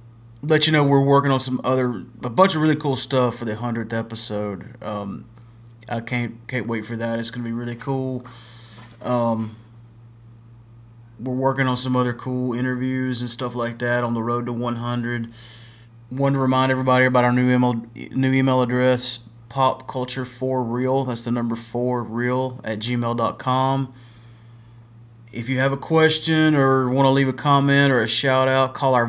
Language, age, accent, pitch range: English, 30-49, American, 115-135 Hz